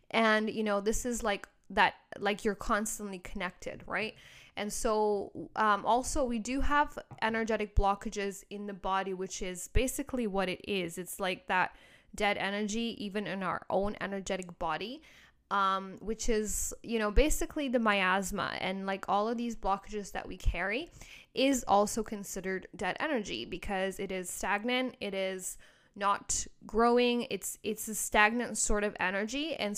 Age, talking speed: 10-29, 160 wpm